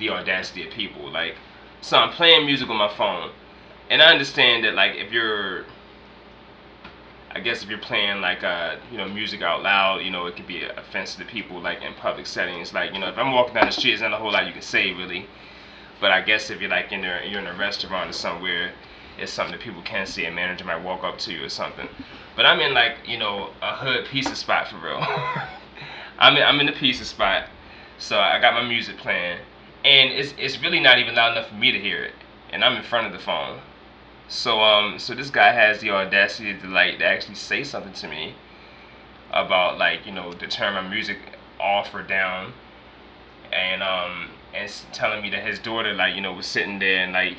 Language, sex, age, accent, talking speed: English, male, 20-39, American, 230 wpm